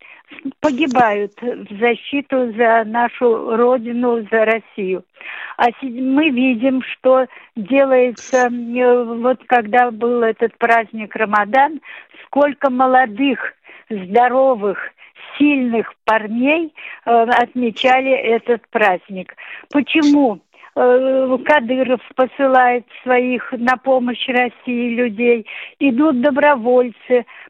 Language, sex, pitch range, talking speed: Russian, female, 235-275 Hz, 80 wpm